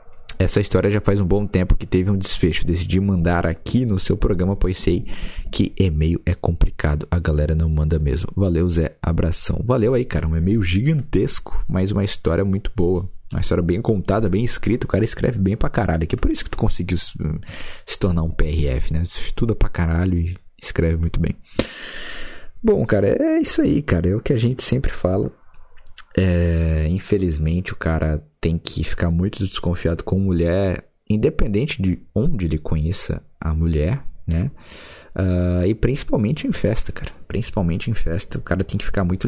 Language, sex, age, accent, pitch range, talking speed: Portuguese, male, 20-39, Brazilian, 80-100 Hz, 185 wpm